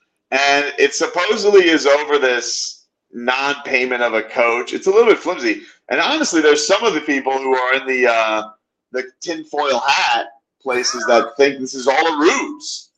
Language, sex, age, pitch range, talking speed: English, male, 40-59, 120-160 Hz, 175 wpm